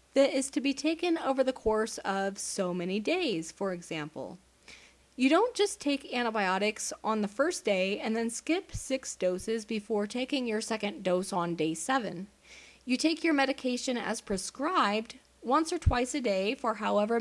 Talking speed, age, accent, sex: 170 wpm, 30-49, American, female